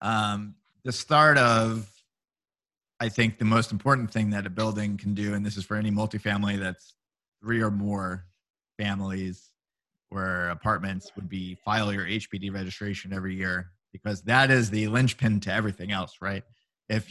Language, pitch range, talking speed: English, 100-115 Hz, 160 wpm